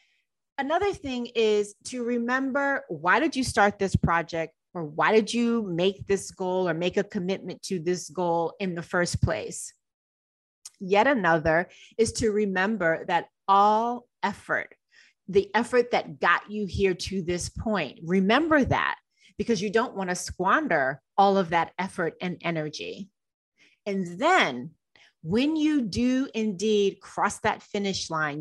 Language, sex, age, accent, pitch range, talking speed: English, female, 30-49, American, 175-230 Hz, 150 wpm